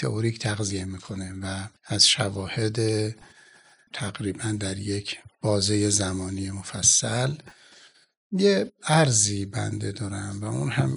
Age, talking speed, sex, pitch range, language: 60-79, 100 wpm, male, 100-120 Hz, Persian